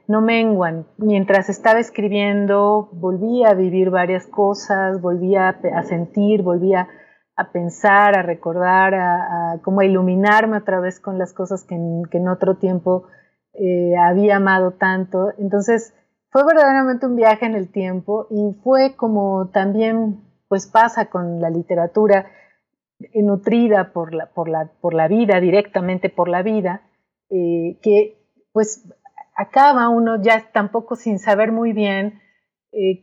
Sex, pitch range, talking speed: female, 185-220 Hz, 135 wpm